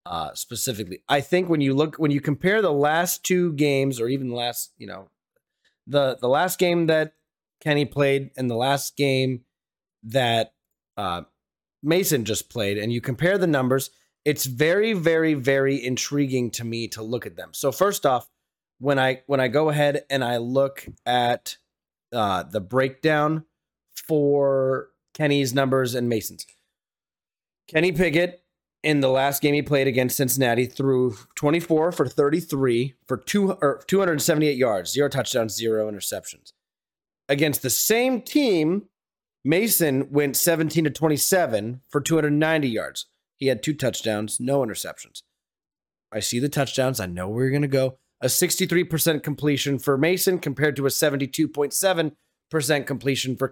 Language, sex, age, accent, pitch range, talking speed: English, male, 30-49, American, 130-160 Hz, 150 wpm